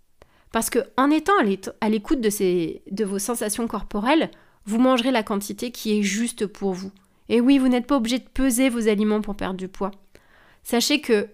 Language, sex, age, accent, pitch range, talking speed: French, female, 30-49, French, 200-255 Hz, 185 wpm